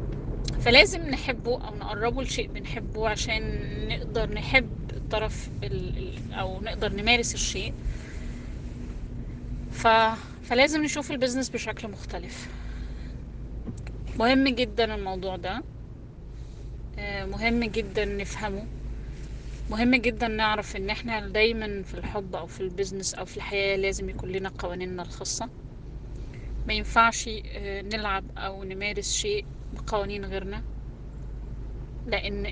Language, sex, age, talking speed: Arabic, female, 20-39, 100 wpm